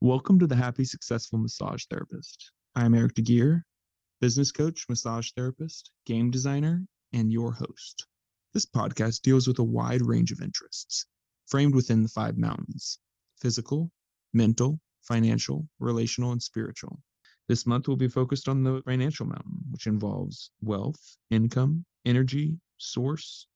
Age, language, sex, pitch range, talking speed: 20-39, English, male, 110-125 Hz, 140 wpm